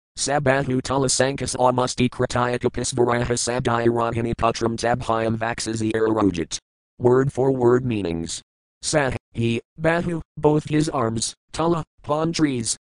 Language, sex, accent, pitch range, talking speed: English, male, American, 110-130 Hz, 105 wpm